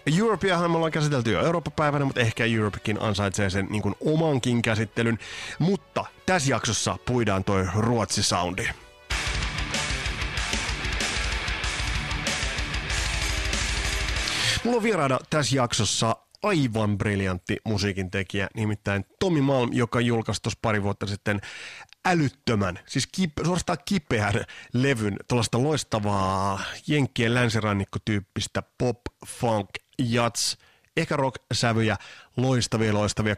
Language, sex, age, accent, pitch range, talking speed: Finnish, male, 30-49, native, 100-130 Hz, 95 wpm